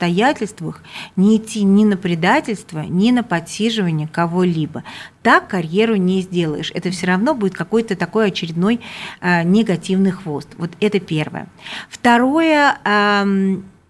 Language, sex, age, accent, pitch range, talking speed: Russian, female, 40-59, native, 170-215 Hz, 120 wpm